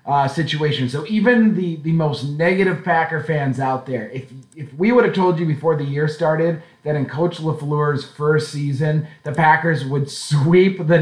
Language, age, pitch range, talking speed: English, 30-49, 145-175 Hz, 185 wpm